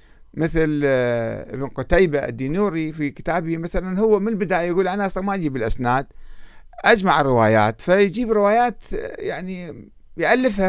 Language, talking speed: Arabic, 125 wpm